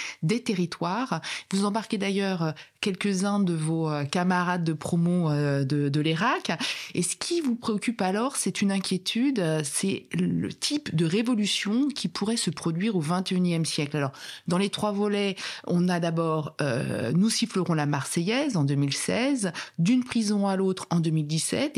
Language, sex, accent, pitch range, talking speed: French, female, French, 165-225 Hz, 165 wpm